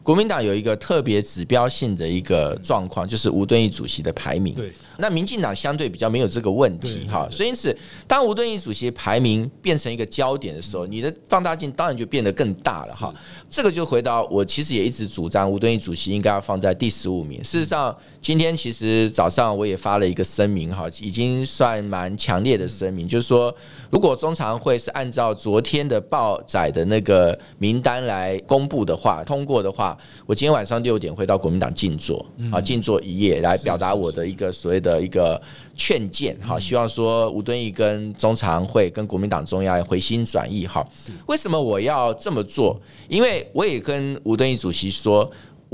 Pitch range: 100-145 Hz